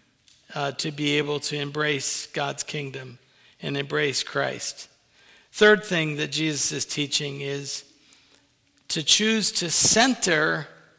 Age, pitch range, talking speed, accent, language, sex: 50-69, 155-185 Hz, 120 wpm, American, English, male